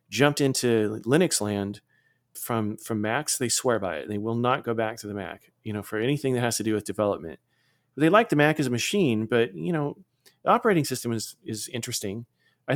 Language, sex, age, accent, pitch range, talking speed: English, male, 40-59, American, 115-150 Hz, 215 wpm